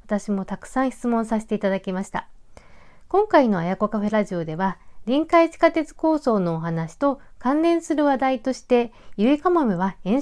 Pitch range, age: 195-280 Hz, 50-69